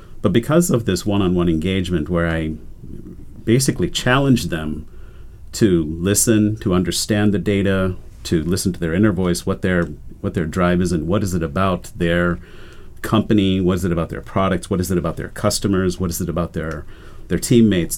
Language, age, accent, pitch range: English, 50-69, American, 85-105 Hz